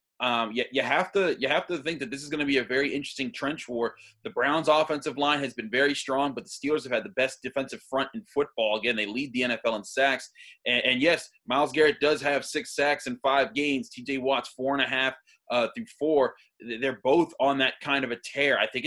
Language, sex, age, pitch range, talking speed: English, male, 20-39, 130-155 Hz, 245 wpm